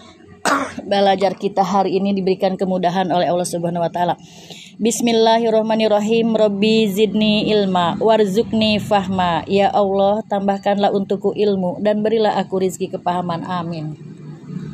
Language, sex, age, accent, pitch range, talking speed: Indonesian, female, 20-39, native, 180-220 Hz, 115 wpm